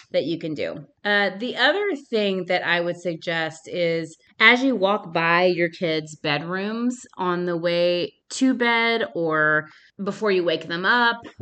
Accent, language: American, English